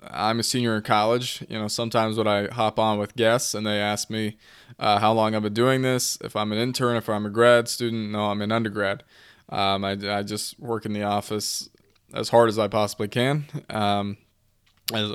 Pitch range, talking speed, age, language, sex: 105-120 Hz, 215 wpm, 20-39, English, male